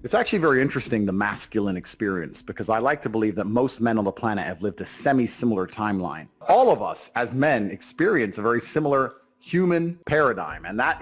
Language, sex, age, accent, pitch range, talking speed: English, male, 30-49, American, 105-125 Hz, 200 wpm